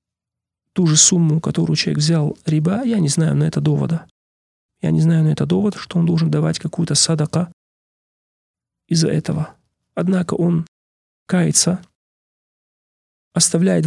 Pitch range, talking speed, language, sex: 155-175 Hz, 135 wpm, Russian, male